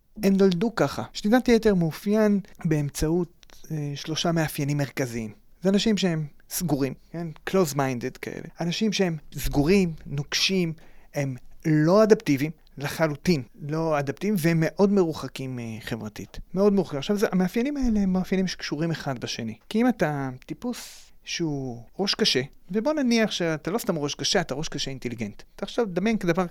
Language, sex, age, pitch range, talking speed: Hebrew, male, 30-49, 140-200 Hz, 155 wpm